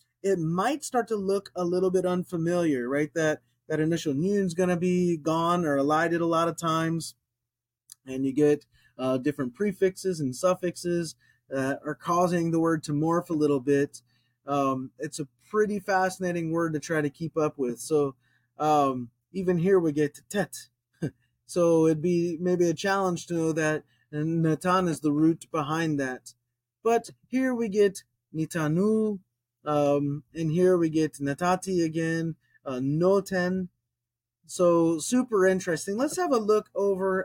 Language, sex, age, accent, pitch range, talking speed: English, male, 20-39, American, 135-180 Hz, 160 wpm